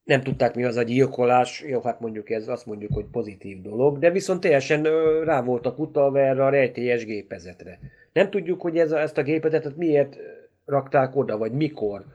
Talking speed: 190 wpm